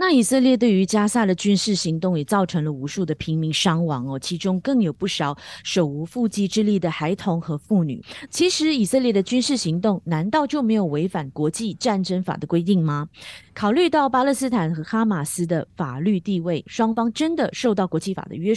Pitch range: 165-235 Hz